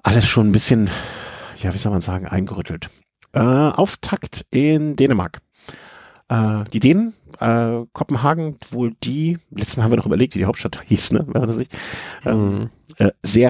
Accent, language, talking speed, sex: German, German, 145 wpm, male